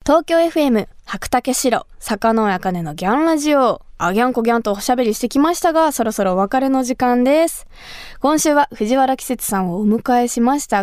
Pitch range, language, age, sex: 205-285 Hz, Japanese, 20-39, female